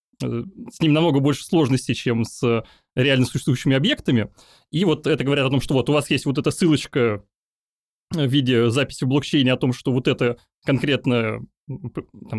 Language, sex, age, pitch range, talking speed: Russian, male, 20-39, 125-150 Hz, 170 wpm